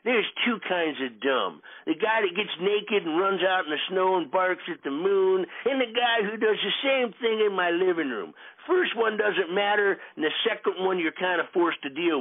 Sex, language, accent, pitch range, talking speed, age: male, English, American, 215-280 Hz, 230 wpm, 50-69